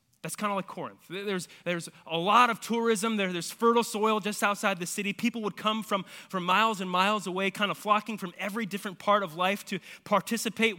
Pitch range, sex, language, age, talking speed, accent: 175-215 Hz, male, English, 20-39, 210 wpm, American